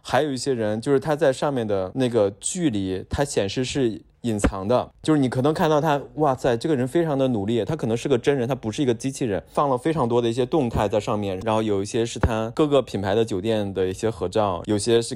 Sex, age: male, 20-39